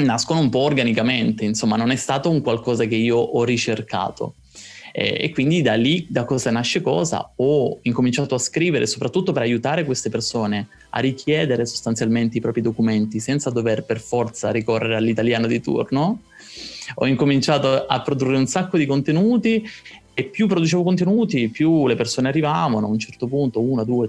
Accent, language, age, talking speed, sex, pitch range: native, Italian, 20-39, 170 wpm, male, 115-145 Hz